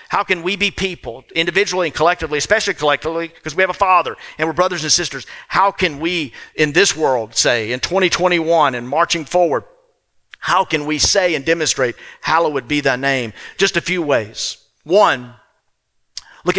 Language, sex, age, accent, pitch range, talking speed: English, male, 50-69, American, 145-190 Hz, 175 wpm